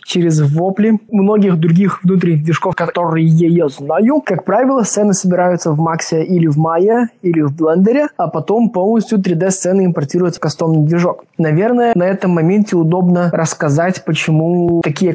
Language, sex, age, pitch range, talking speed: Russian, male, 20-39, 160-190 Hz, 145 wpm